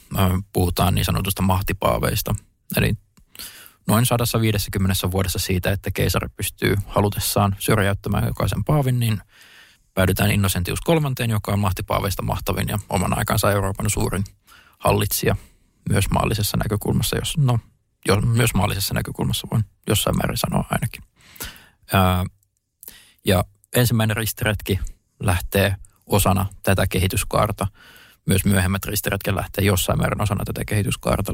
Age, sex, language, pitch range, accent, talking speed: 20-39, male, Finnish, 95-110 Hz, native, 115 wpm